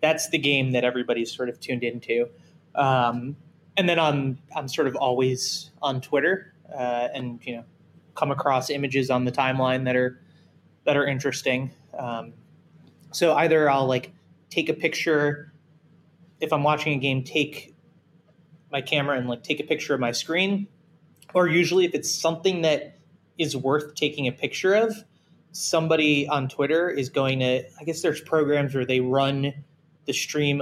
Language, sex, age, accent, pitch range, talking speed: English, male, 20-39, American, 130-160 Hz, 165 wpm